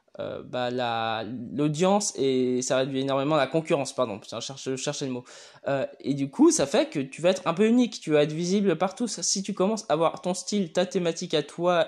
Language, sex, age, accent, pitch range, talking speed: French, male, 20-39, French, 140-185 Hz, 230 wpm